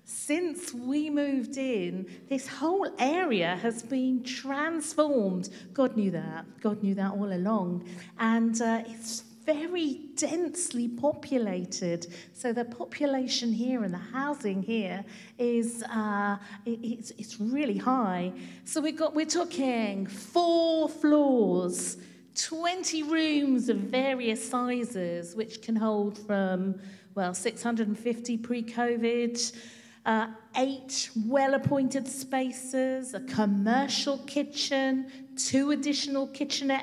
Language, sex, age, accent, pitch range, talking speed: English, female, 40-59, British, 225-280 Hz, 110 wpm